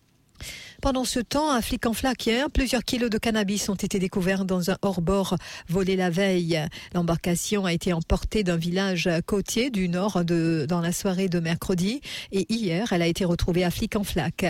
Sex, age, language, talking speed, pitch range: female, 50-69, English, 175 wpm, 175-205 Hz